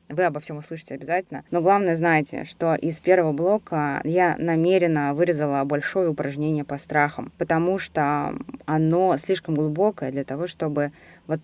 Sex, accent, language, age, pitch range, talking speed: female, native, Russian, 20-39, 140-165 Hz, 145 wpm